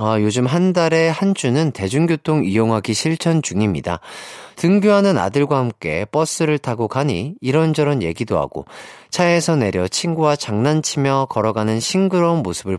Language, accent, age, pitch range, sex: Korean, native, 40-59, 120-180 Hz, male